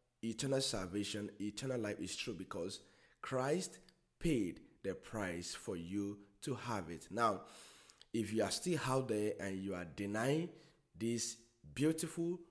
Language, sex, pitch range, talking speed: English, male, 95-115 Hz, 140 wpm